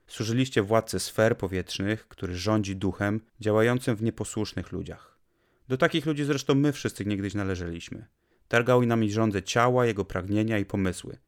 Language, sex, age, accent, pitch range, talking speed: Polish, male, 30-49, native, 100-125 Hz, 145 wpm